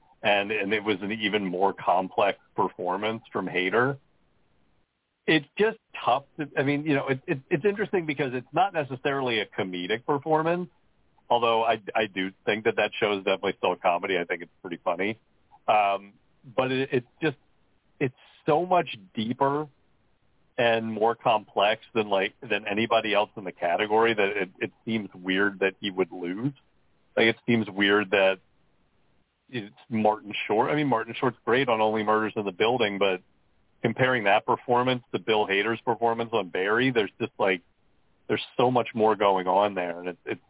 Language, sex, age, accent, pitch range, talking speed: English, male, 40-59, American, 100-130 Hz, 180 wpm